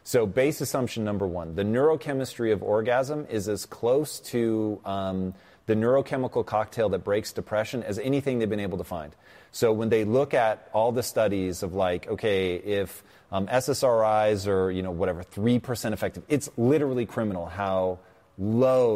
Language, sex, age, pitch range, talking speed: English, male, 30-49, 100-125 Hz, 165 wpm